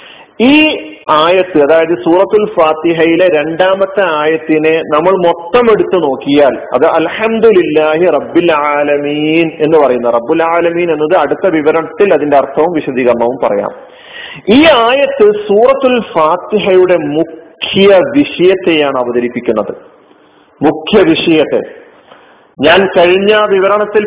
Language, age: Malayalam, 40-59